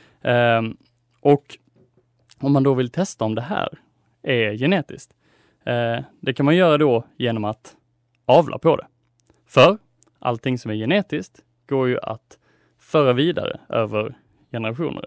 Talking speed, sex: 130 wpm, male